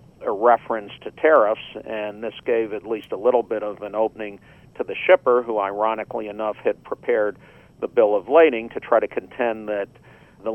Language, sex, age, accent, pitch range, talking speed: English, male, 50-69, American, 105-115 Hz, 190 wpm